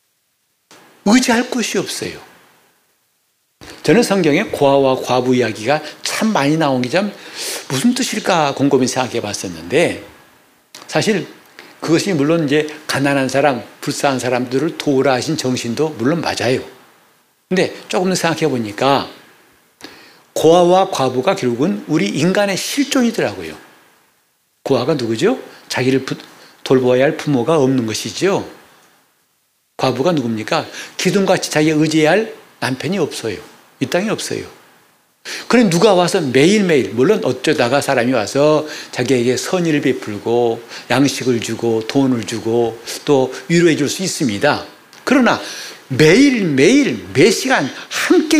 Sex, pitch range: male, 130-185 Hz